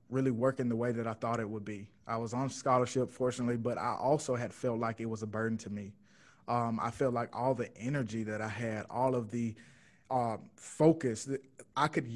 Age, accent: 20-39, American